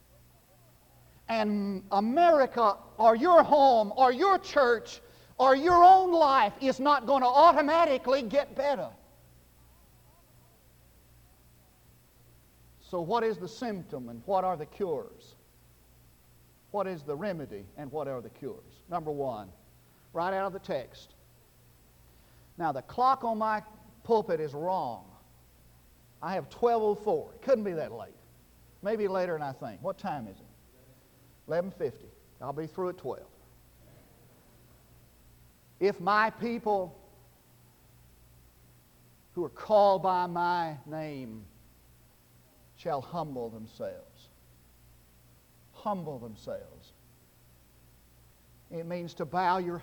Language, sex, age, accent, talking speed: English, male, 50-69, American, 115 wpm